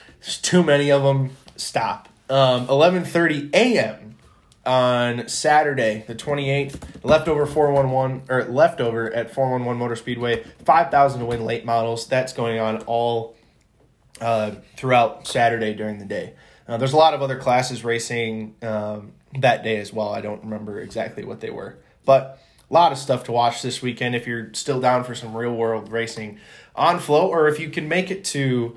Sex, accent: male, American